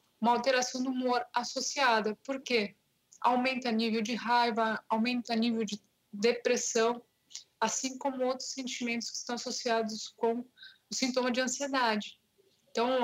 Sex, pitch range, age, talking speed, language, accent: female, 220-255 Hz, 20-39, 135 wpm, Portuguese, Brazilian